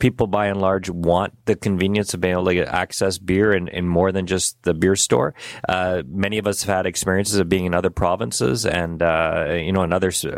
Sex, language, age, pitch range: male, English, 30-49, 95-115 Hz